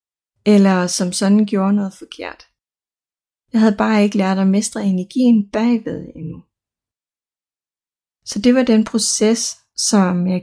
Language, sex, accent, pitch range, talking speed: Danish, female, native, 195-225 Hz, 130 wpm